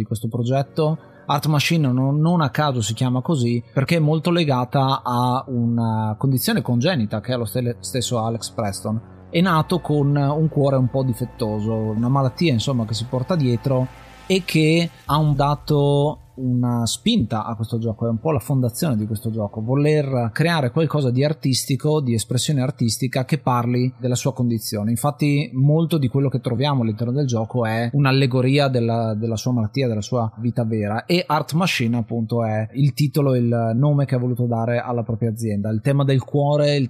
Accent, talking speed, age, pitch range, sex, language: native, 185 wpm, 30-49, 115-145 Hz, male, Italian